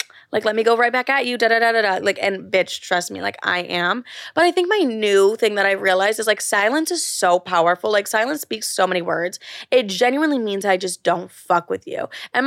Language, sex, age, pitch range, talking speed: English, female, 20-39, 190-245 Hz, 230 wpm